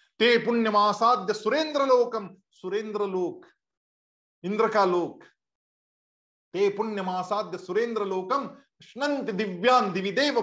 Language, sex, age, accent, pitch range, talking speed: Hindi, male, 50-69, native, 185-240 Hz, 90 wpm